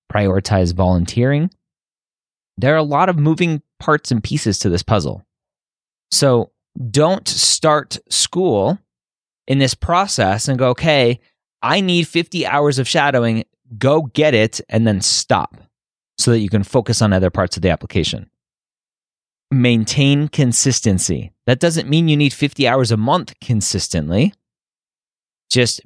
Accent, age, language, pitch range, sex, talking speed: American, 30-49, English, 105-145 Hz, male, 140 wpm